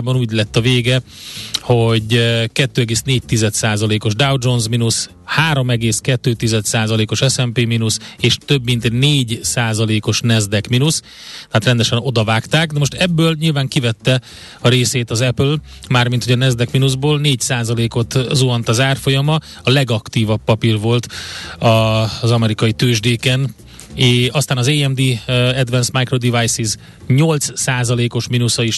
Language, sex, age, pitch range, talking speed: Hungarian, male, 30-49, 115-135 Hz, 125 wpm